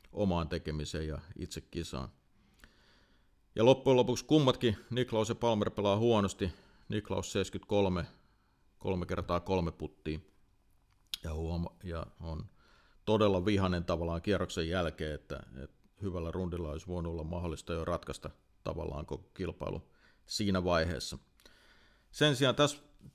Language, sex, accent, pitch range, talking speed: Finnish, male, native, 85-105 Hz, 120 wpm